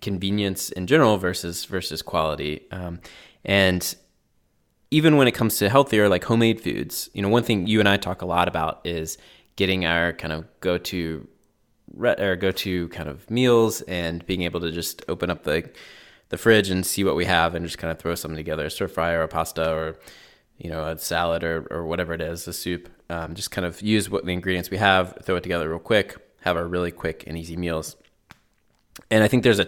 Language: English